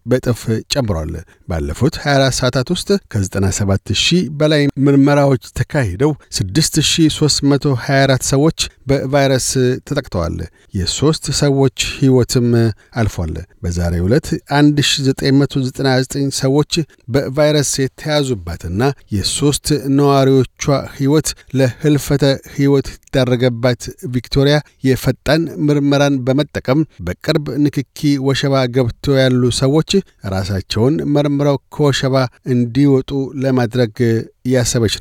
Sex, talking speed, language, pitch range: male, 75 wpm, Amharic, 120-145 Hz